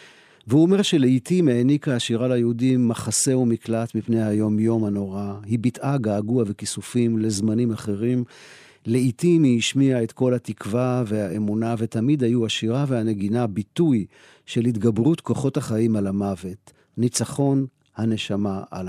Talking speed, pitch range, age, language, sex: 120 wpm, 110-135 Hz, 50-69, Hebrew, male